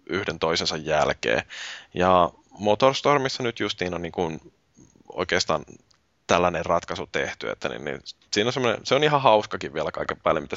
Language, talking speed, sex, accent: Finnish, 155 wpm, male, native